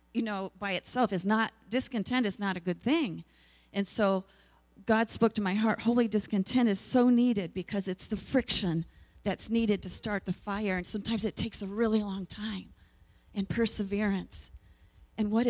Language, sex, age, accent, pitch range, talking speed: English, female, 40-59, American, 200-260 Hz, 180 wpm